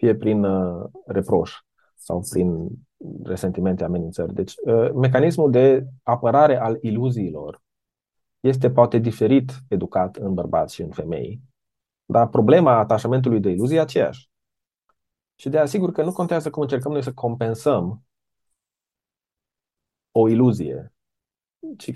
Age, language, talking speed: 30-49, Romanian, 115 wpm